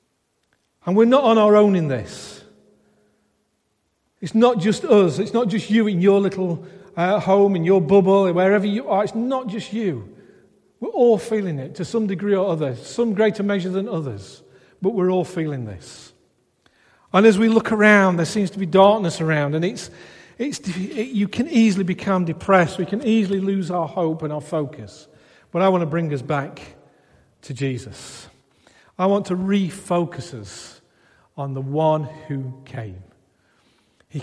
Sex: male